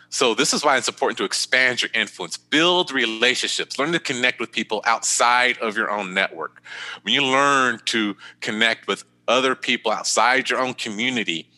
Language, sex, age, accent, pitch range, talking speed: English, male, 30-49, American, 90-125 Hz, 175 wpm